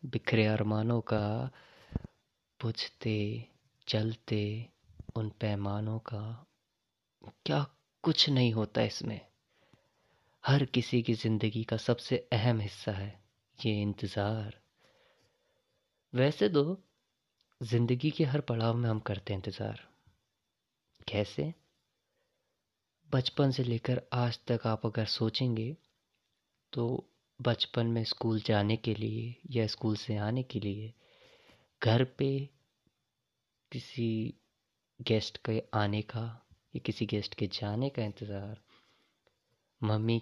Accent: native